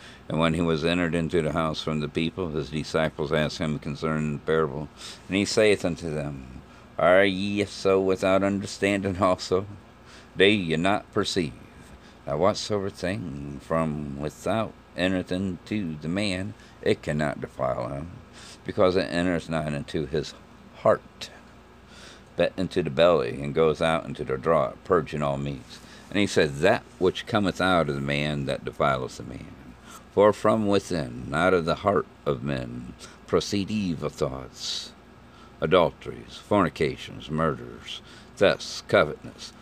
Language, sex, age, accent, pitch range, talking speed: English, male, 50-69, American, 75-95 Hz, 145 wpm